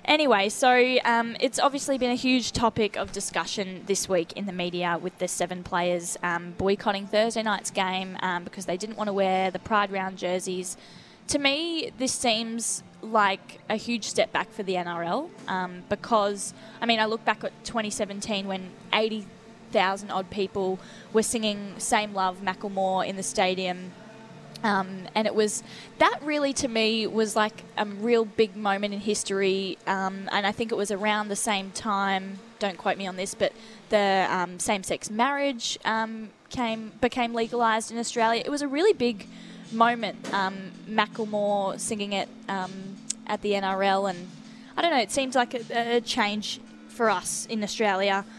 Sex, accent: female, Australian